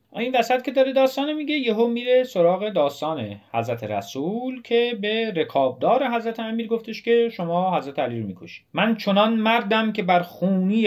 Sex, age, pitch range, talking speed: male, 30-49, 135-205 Hz, 160 wpm